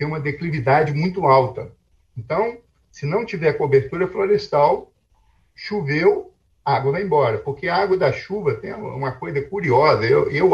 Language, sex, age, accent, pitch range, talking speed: Portuguese, male, 50-69, Brazilian, 130-190 Hz, 155 wpm